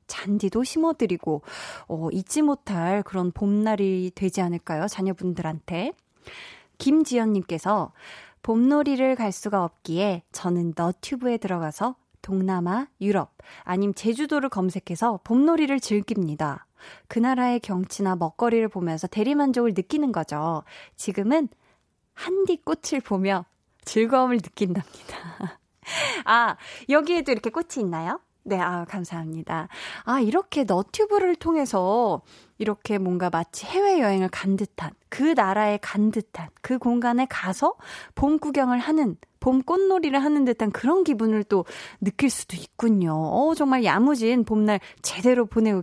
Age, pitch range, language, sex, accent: 20-39, 185-265 Hz, Korean, female, native